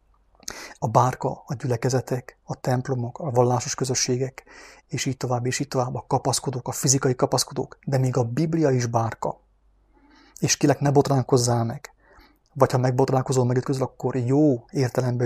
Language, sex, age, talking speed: English, male, 30-49, 150 wpm